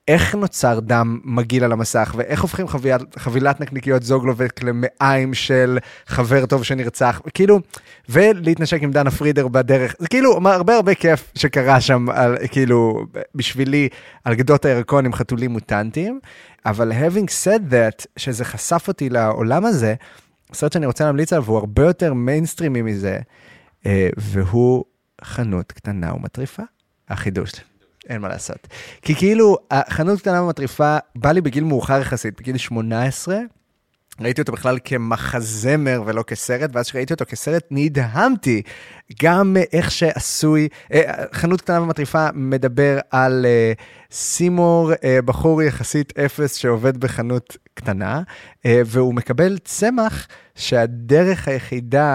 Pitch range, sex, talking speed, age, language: 120-155 Hz, male, 125 wpm, 30-49, Hebrew